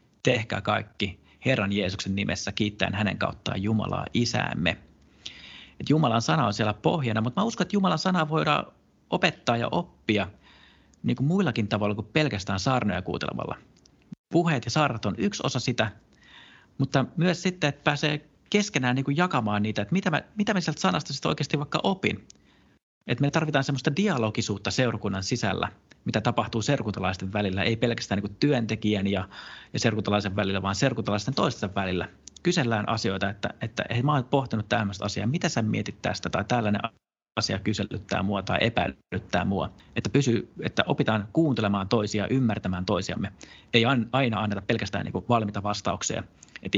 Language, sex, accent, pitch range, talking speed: Finnish, male, native, 100-135 Hz, 155 wpm